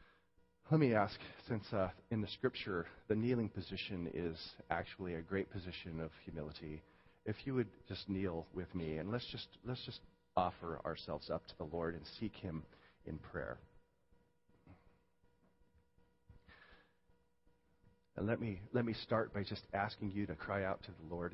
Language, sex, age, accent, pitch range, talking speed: English, male, 40-59, American, 85-115 Hz, 160 wpm